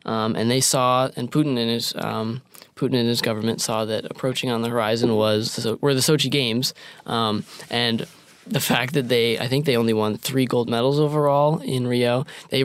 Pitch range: 115-140 Hz